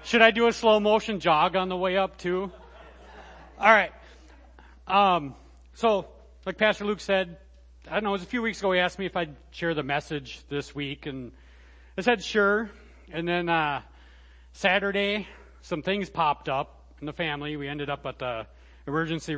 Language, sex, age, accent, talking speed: English, male, 30-49, American, 185 wpm